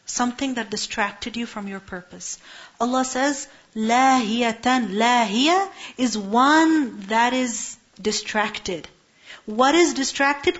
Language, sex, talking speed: English, female, 110 wpm